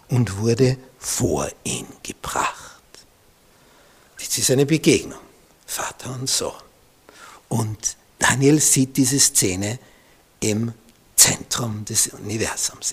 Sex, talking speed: male, 95 wpm